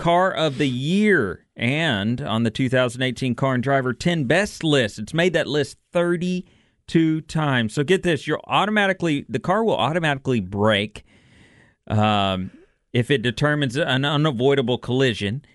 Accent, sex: American, male